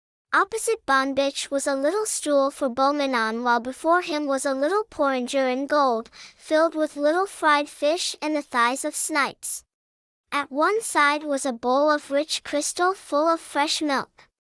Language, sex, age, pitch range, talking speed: English, male, 10-29, 270-325 Hz, 165 wpm